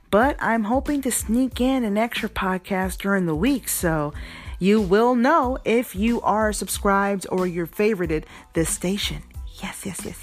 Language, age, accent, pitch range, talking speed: English, 30-49, American, 170-245 Hz, 165 wpm